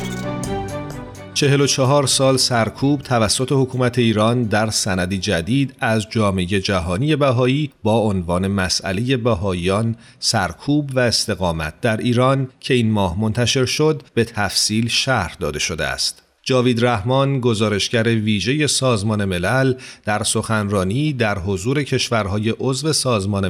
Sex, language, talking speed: male, Persian, 115 wpm